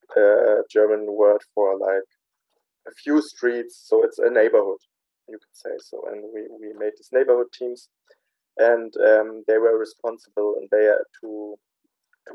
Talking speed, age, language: 165 wpm, 20-39, Slovak